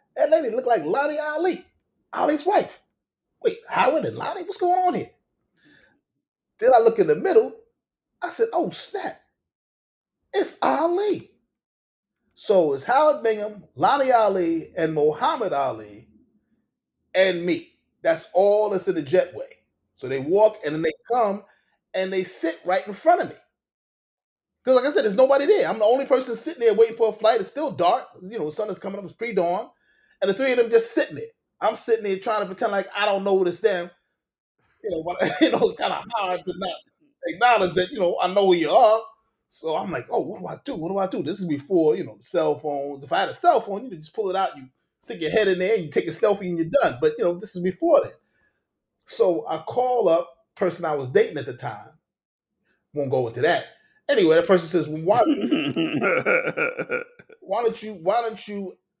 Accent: American